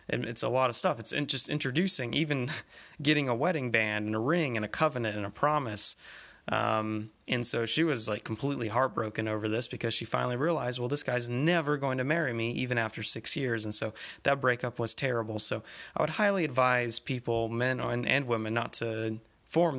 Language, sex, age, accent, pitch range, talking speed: English, male, 20-39, American, 115-135 Hz, 200 wpm